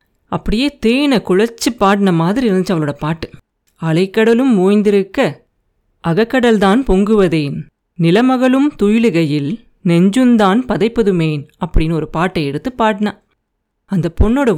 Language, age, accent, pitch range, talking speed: Tamil, 30-49, native, 180-235 Hz, 95 wpm